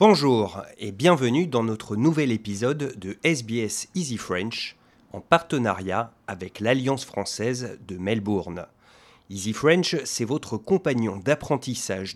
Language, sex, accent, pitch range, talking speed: English, male, French, 100-150 Hz, 120 wpm